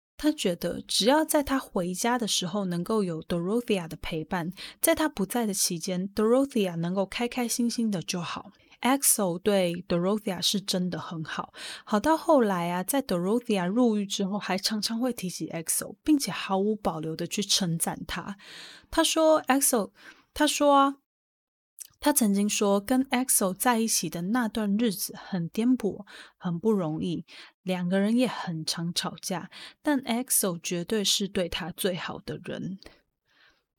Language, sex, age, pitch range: Chinese, female, 20-39, 180-245 Hz